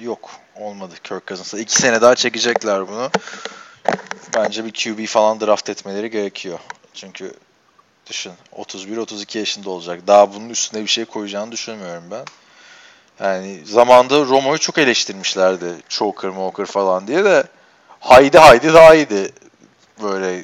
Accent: native